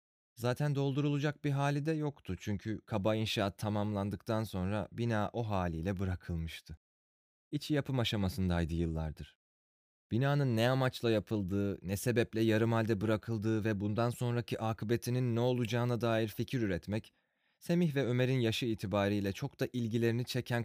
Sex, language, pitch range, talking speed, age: male, Turkish, 95-125 Hz, 135 wpm, 30-49